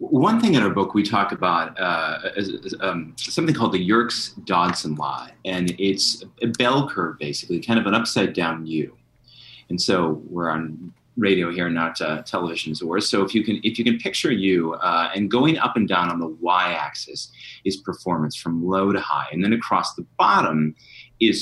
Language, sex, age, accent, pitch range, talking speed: English, male, 30-49, American, 85-120 Hz, 195 wpm